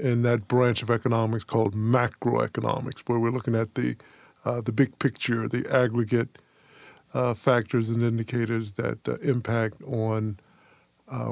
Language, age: English, 50-69